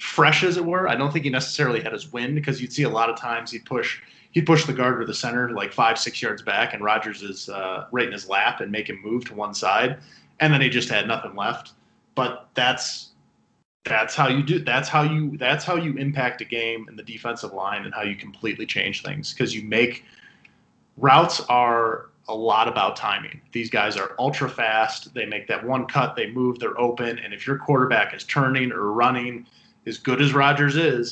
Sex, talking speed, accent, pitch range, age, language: male, 225 wpm, American, 115-145 Hz, 20-39, English